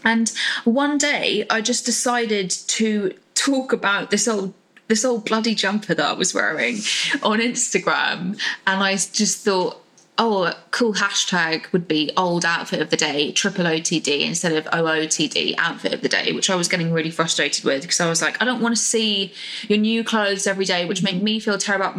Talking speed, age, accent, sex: 195 wpm, 10-29, British, female